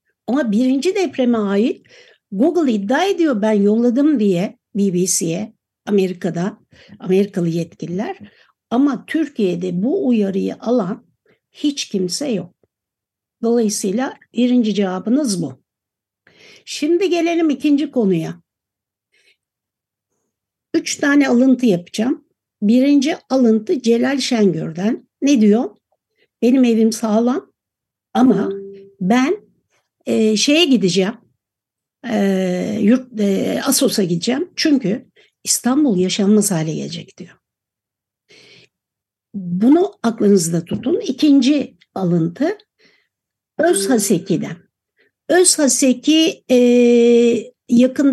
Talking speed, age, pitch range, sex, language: 85 wpm, 60-79, 195-265 Hz, female, Turkish